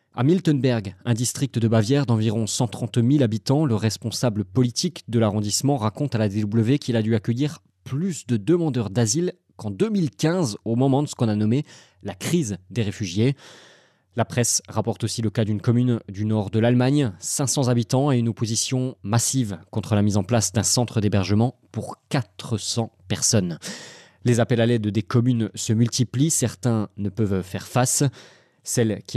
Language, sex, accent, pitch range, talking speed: French, male, French, 110-140 Hz, 175 wpm